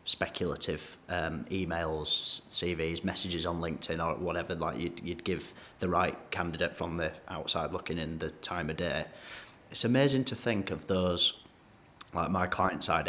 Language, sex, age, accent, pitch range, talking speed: English, male, 30-49, British, 80-95 Hz, 160 wpm